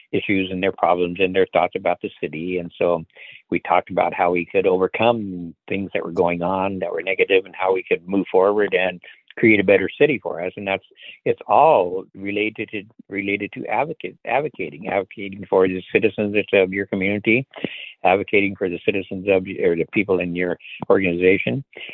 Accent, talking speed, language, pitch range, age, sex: American, 185 wpm, English, 95-120 Hz, 60-79, male